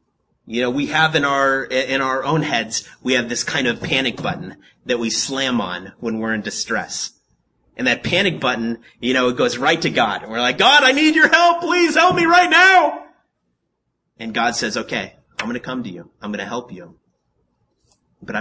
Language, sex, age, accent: English, male, 30-49, American